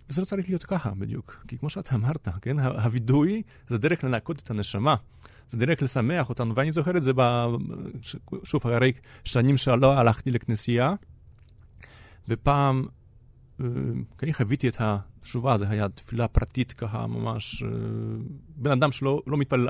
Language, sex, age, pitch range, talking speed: Hebrew, male, 40-59, 115-155 Hz, 150 wpm